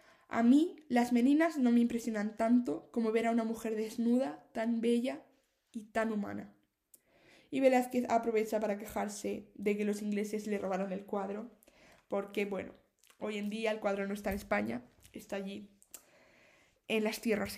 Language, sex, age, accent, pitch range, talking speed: Spanish, female, 20-39, Spanish, 215-255 Hz, 165 wpm